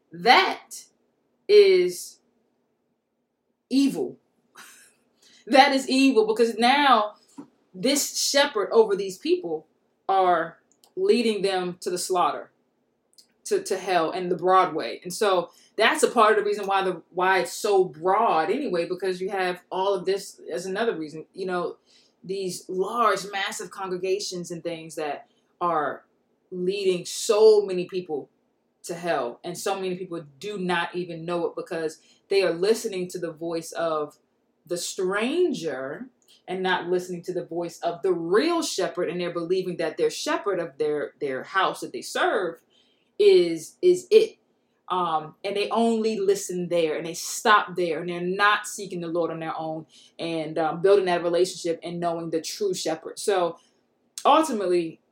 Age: 20-39